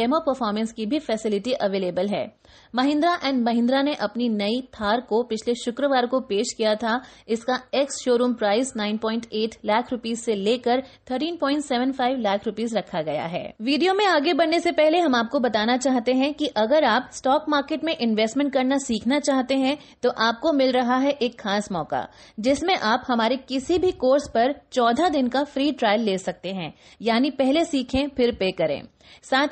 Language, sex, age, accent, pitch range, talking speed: Hindi, female, 30-49, native, 225-285 Hz, 180 wpm